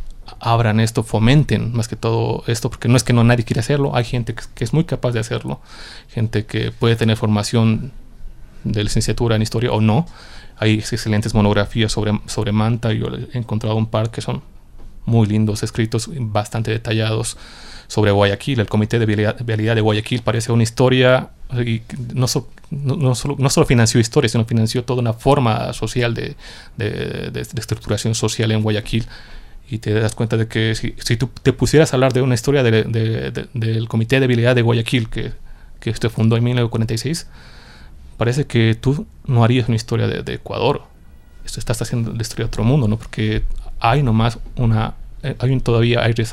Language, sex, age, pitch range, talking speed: Spanish, male, 30-49, 110-125 Hz, 190 wpm